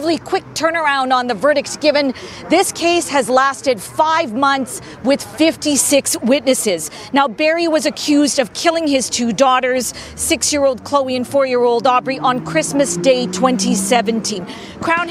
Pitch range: 235-290 Hz